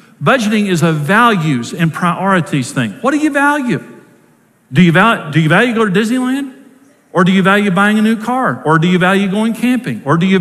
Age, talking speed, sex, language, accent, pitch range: 50-69, 215 wpm, male, English, American, 160-215 Hz